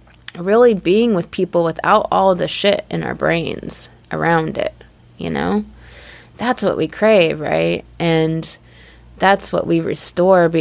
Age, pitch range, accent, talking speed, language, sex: 20-39, 160-190 Hz, American, 140 wpm, English, female